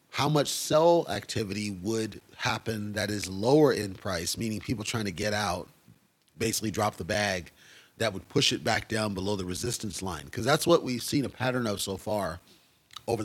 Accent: American